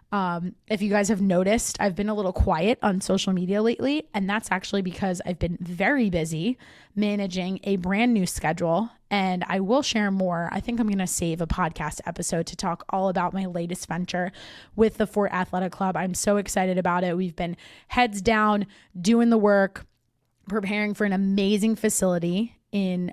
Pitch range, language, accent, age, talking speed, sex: 180-235 Hz, English, American, 20-39, 185 wpm, female